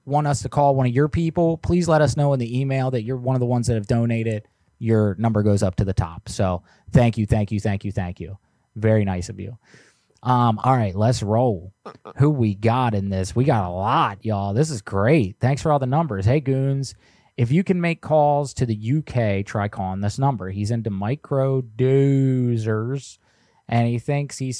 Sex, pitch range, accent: male, 105-130 Hz, American